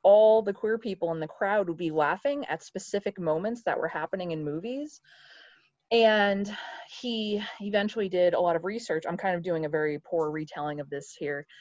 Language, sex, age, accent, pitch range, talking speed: English, female, 20-39, American, 160-205 Hz, 190 wpm